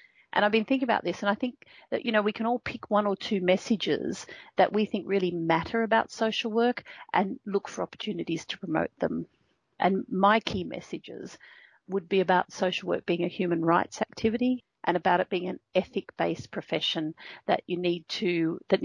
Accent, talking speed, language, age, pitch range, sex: Australian, 195 wpm, English, 40-59, 175-220 Hz, female